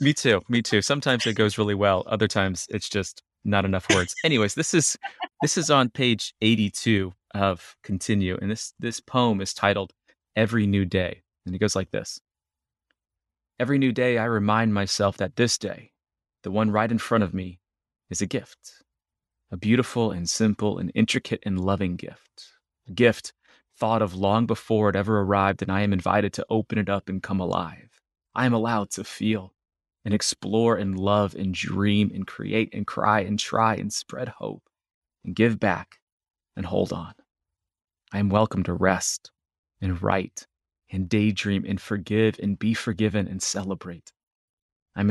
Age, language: 30-49, English